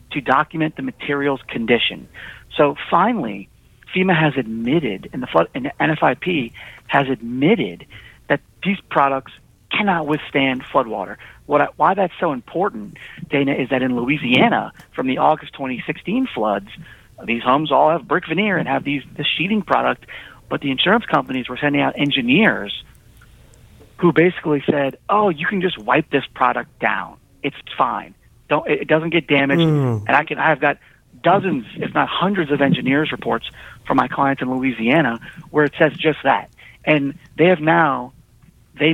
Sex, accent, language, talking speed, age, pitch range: male, American, English, 160 wpm, 40-59, 130-165 Hz